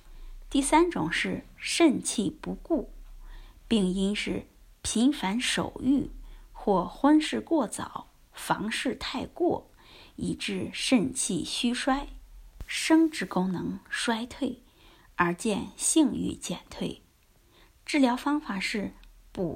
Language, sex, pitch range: Chinese, female, 225-305 Hz